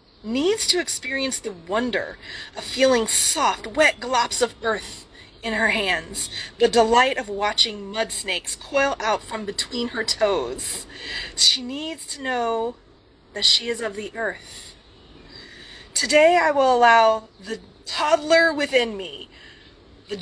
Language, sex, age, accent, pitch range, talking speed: English, female, 30-49, American, 215-275 Hz, 135 wpm